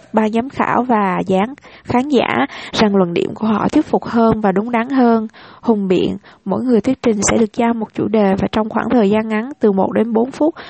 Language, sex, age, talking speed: English, female, 20-39, 235 wpm